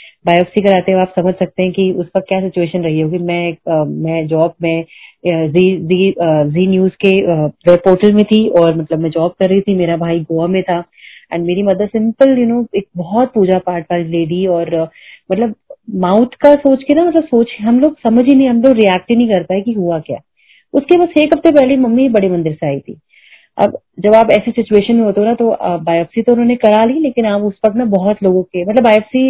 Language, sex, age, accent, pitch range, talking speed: Hindi, female, 30-49, native, 175-235 Hz, 215 wpm